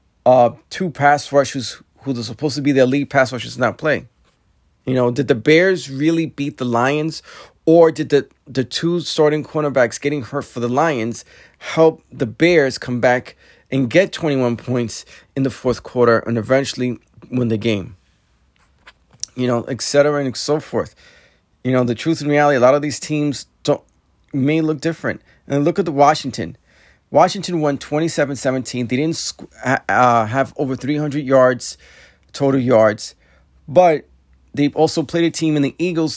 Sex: male